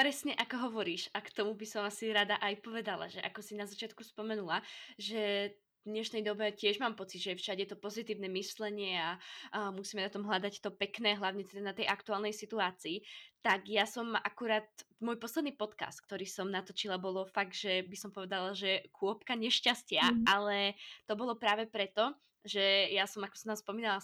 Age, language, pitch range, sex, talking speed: 20-39, Slovak, 200-235 Hz, female, 185 wpm